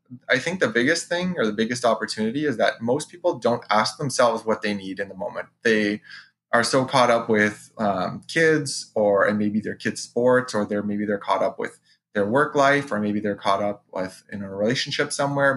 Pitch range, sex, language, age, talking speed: 105-130 Hz, male, English, 20-39, 215 wpm